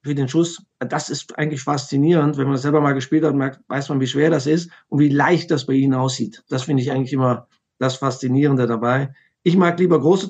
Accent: German